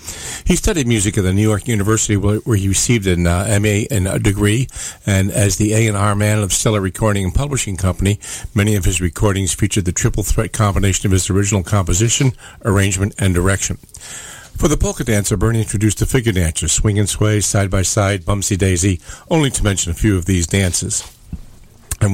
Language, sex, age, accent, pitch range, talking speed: English, male, 50-69, American, 95-115 Hz, 185 wpm